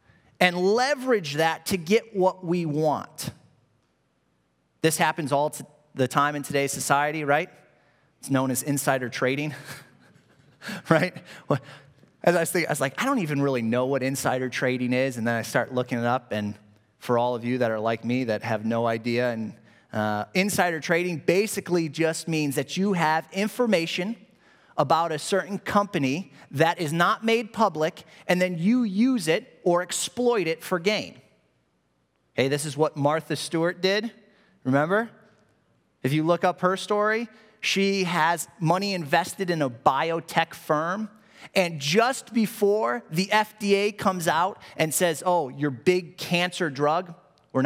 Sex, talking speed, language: male, 160 wpm, English